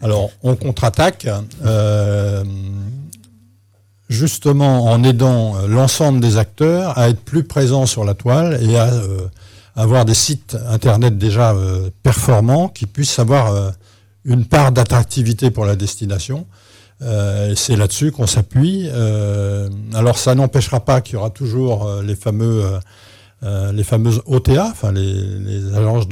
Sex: male